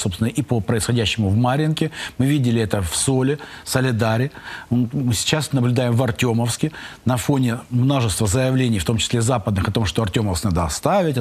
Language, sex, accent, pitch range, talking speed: Russian, male, native, 115-155 Hz, 165 wpm